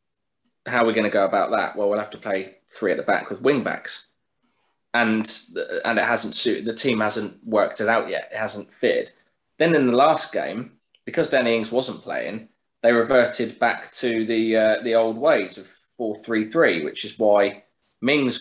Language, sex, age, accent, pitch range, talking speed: English, male, 20-39, British, 105-130 Hz, 200 wpm